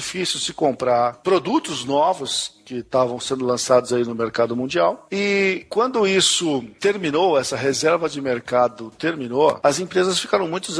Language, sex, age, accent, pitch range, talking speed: English, male, 50-69, Brazilian, 130-180 Hz, 140 wpm